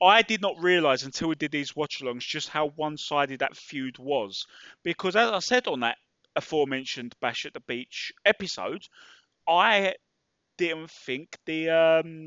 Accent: British